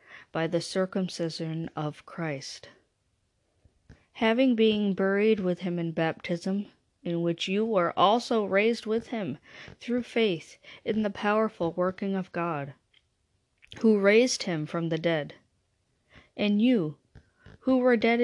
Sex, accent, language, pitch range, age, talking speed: female, American, English, 165-205 Hz, 40-59, 130 wpm